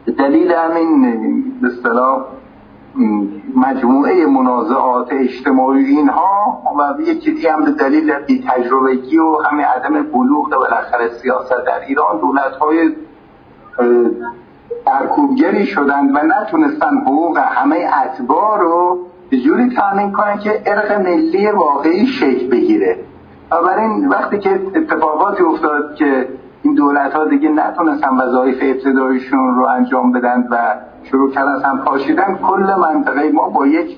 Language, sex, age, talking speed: Persian, male, 50-69, 115 wpm